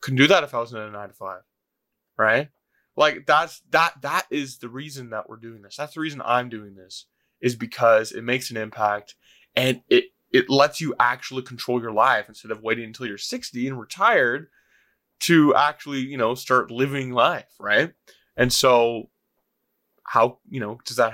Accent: American